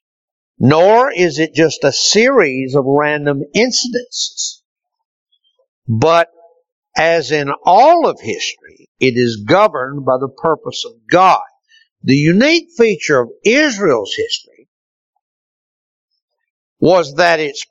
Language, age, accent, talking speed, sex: English, 60-79, American, 110 wpm, male